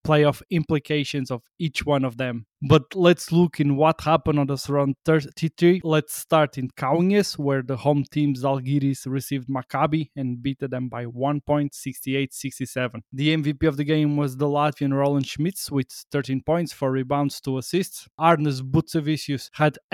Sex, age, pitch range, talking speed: male, 20-39, 135-155 Hz, 160 wpm